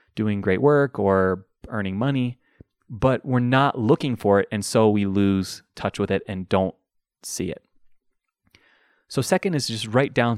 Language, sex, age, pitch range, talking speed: English, male, 30-49, 100-125 Hz, 170 wpm